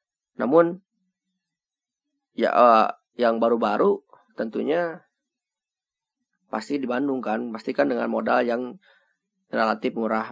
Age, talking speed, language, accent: 30-49, 80 wpm, Indonesian, native